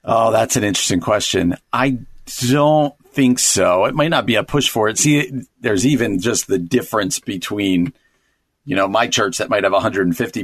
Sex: male